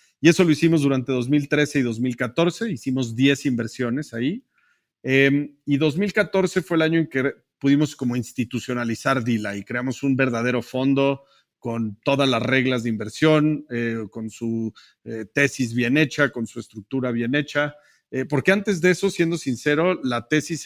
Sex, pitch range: male, 120-150 Hz